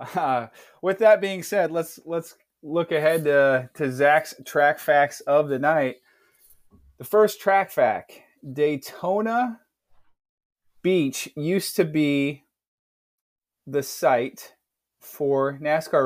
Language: English